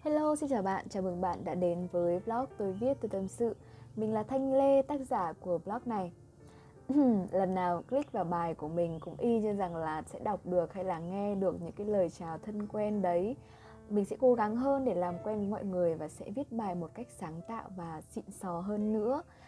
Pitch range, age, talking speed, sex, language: 175-235 Hz, 20-39, 230 wpm, female, Vietnamese